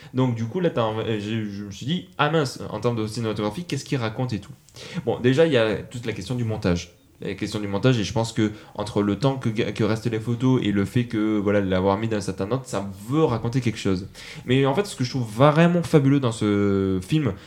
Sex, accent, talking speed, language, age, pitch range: male, French, 250 wpm, French, 20-39, 105-140 Hz